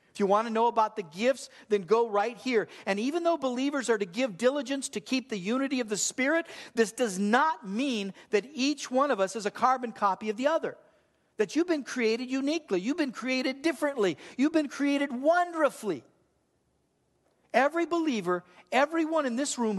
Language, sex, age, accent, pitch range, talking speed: English, male, 50-69, American, 205-260 Hz, 190 wpm